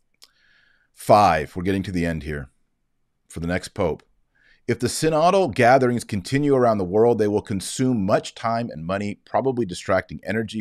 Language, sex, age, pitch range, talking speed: English, male, 40-59, 85-110 Hz, 165 wpm